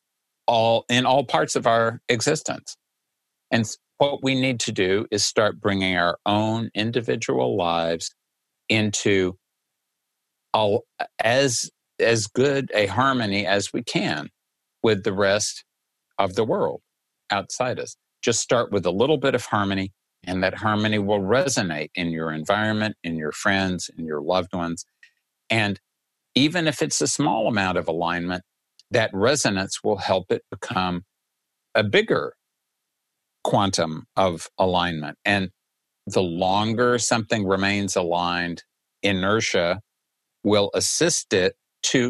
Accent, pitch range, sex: American, 90-115 Hz, male